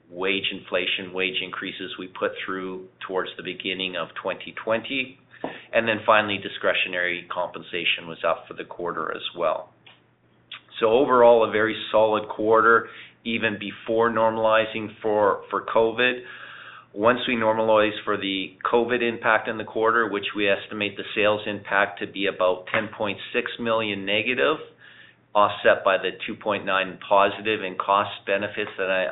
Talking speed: 140 wpm